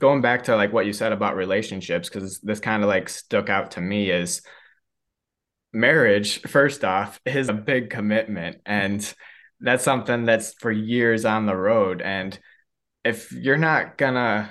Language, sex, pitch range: English, male, 100-115 Hz